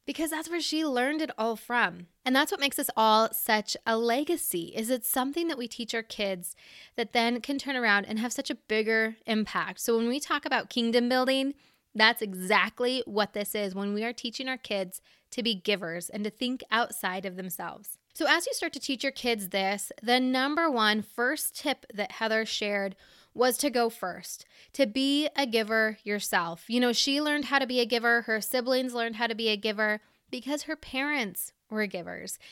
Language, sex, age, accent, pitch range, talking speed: English, female, 20-39, American, 210-265 Hz, 205 wpm